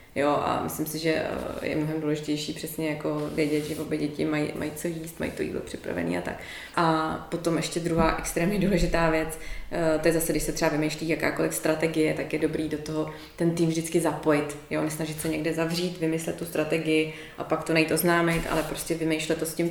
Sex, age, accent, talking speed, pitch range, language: female, 20-39, native, 205 wpm, 155-165 Hz, Czech